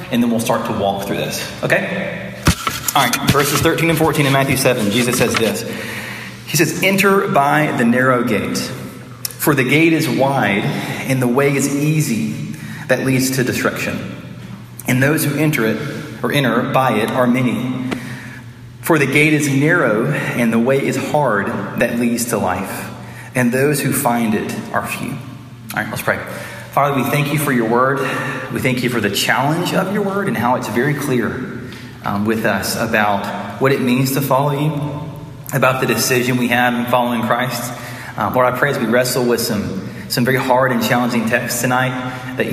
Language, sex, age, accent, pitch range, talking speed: English, male, 30-49, American, 120-140 Hz, 190 wpm